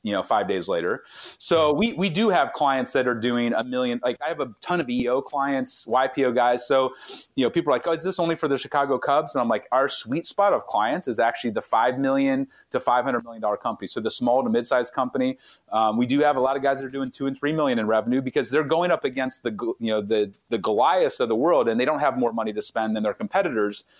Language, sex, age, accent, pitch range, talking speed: English, male, 30-49, American, 120-160 Hz, 265 wpm